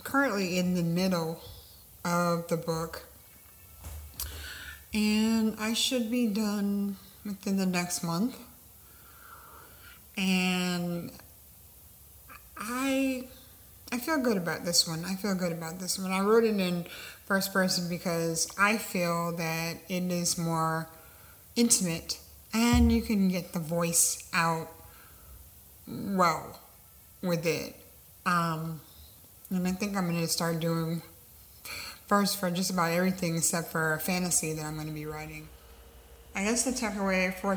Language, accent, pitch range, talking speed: English, American, 155-195 Hz, 135 wpm